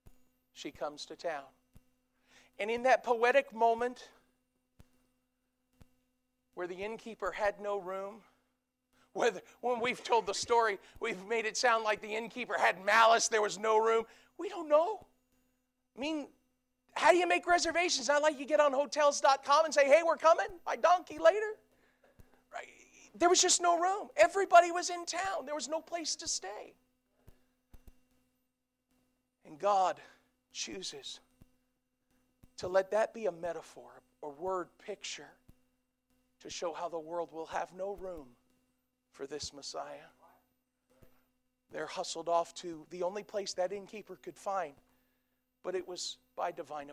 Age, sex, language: 40-59, male, English